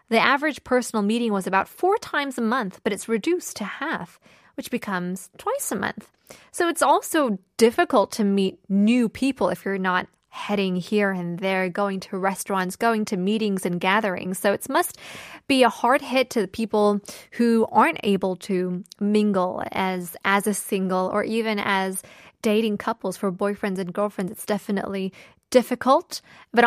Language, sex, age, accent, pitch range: Korean, female, 20-39, American, 195-255 Hz